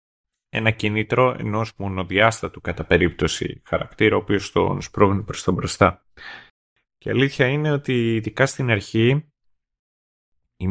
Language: Greek